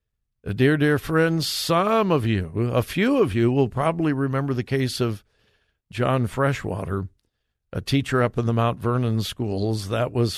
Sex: male